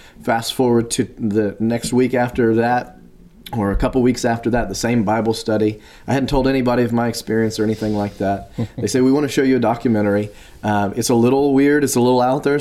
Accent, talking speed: American, 225 wpm